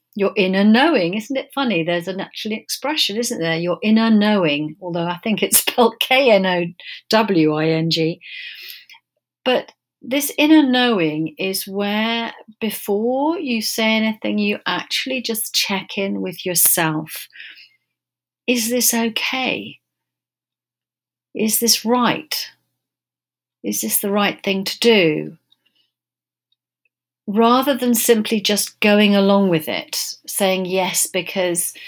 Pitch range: 175-225 Hz